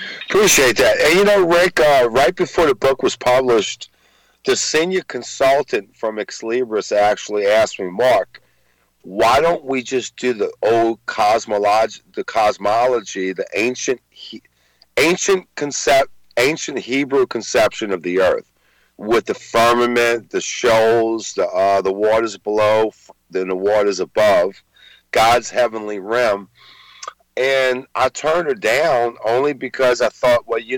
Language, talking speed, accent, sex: English, 135 wpm, American, male